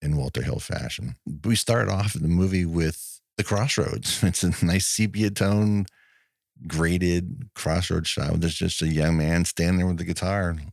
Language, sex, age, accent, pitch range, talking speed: English, male, 50-69, American, 85-105 Hz, 170 wpm